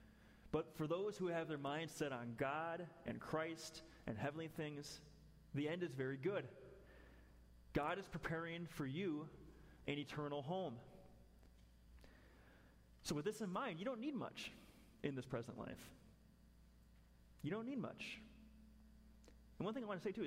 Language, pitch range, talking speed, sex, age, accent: English, 110-165 Hz, 155 wpm, male, 30-49, American